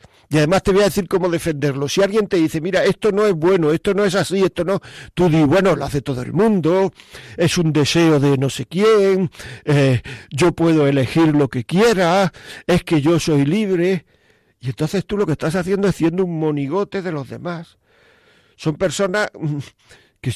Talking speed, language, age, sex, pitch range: 200 wpm, Spanish, 50-69, male, 140-185 Hz